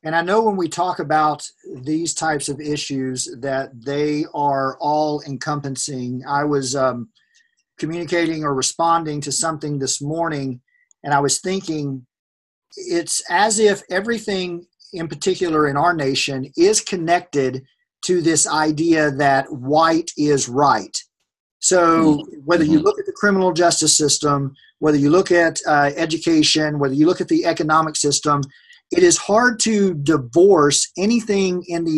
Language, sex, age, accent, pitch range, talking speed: English, male, 40-59, American, 145-185 Hz, 145 wpm